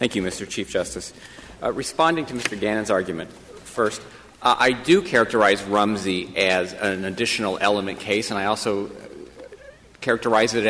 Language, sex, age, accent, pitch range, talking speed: English, male, 40-59, American, 100-115 Hz, 150 wpm